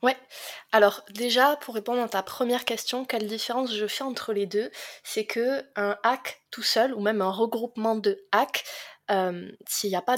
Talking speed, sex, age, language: 190 wpm, female, 20-39, French